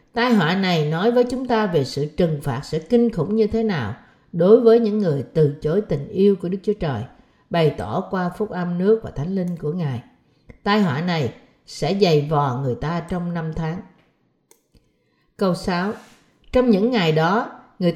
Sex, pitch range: female, 155-225 Hz